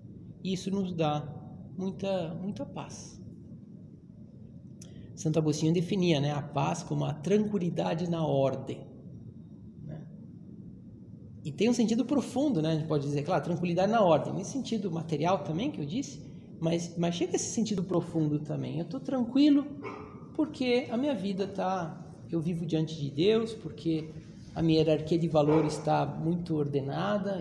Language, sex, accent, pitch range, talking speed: Portuguese, male, Brazilian, 155-195 Hz, 150 wpm